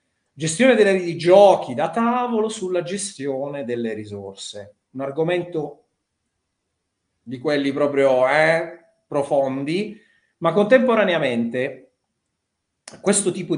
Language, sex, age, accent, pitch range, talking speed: Italian, male, 30-49, native, 125-190 Hz, 95 wpm